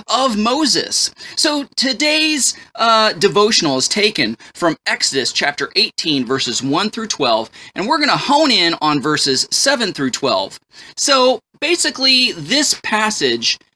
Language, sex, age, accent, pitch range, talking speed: English, male, 30-49, American, 155-250 Hz, 130 wpm